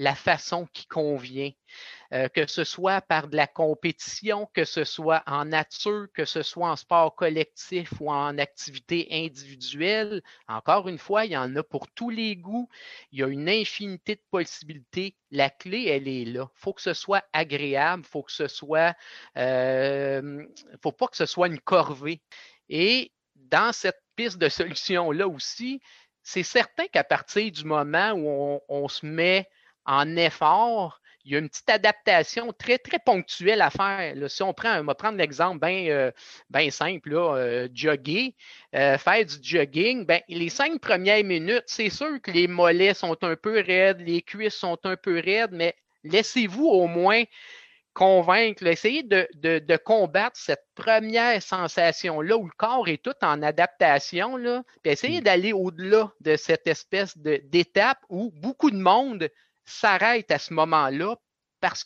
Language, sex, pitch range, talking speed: French, male, 155-215 Hz, 160 wpm